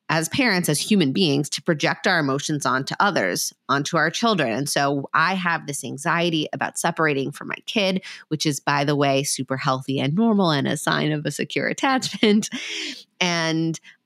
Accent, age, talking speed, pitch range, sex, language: American, 30-49, 180 wpm, 145-190 Hz, female, English